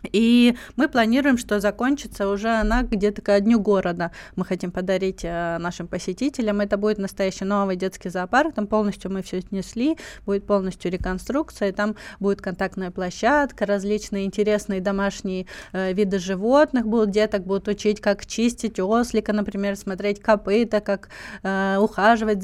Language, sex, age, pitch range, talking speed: Russian, female, 20-39, 200-230 Hz, 145 wpm